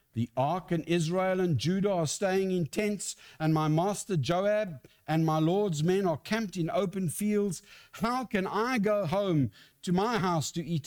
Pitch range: 125-175 Hz